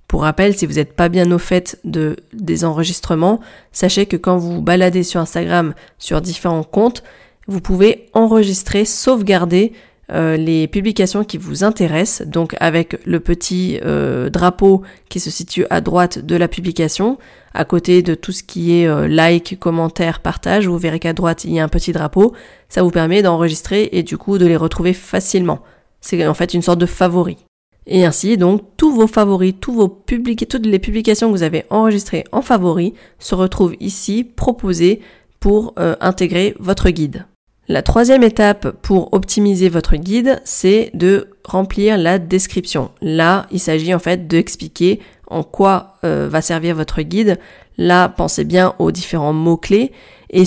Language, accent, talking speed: French, French, 170 wpm